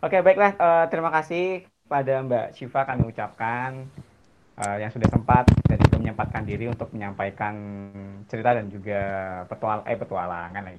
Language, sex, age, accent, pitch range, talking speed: Indonesian, male, 20-39, native, 105-135 Hz, 150 wpm